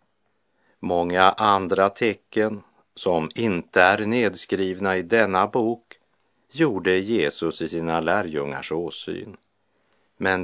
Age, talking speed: 50-69, 100 wpm